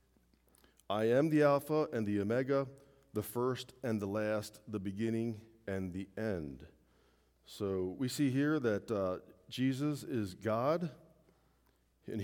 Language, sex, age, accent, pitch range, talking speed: English, male, 40-59, American, 100-135 Hz, 130 wpm